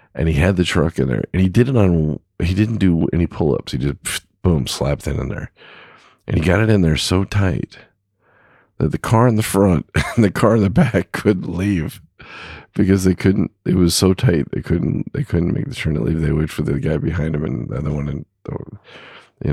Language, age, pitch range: English, 40-59, 75-100 Hz